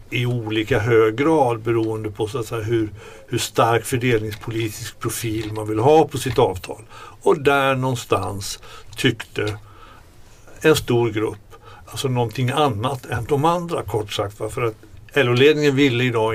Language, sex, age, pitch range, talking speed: Swedish, male, 60-79, 110-135 Hz, 145 wpm